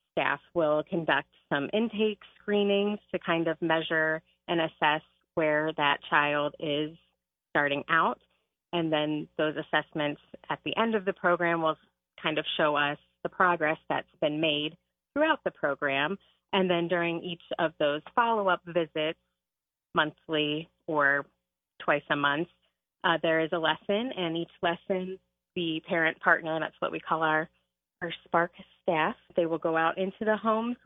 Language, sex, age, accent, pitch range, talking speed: English, female, 30-49, American, 155-195 Hz, 155 wpm